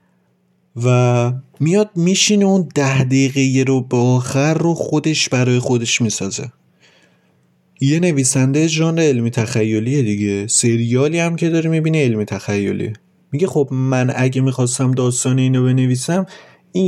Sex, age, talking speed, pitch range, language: male, 30-49, 130 wpm, 110-155 Hz, Persian